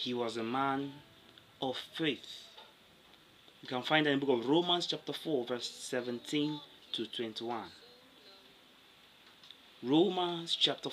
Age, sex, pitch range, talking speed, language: 30-49, male, 120-165 Hz, 125 wpm, English